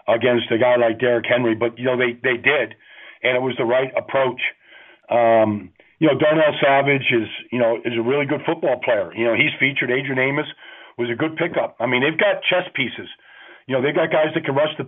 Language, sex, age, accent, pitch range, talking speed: English, male, 50-69, American, 130-155 Hz, 230 wpm